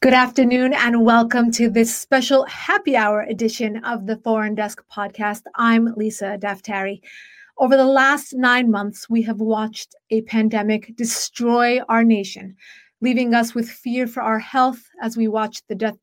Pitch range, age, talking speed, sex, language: 220-255 Hz, 30-49, 160 wpm, female, English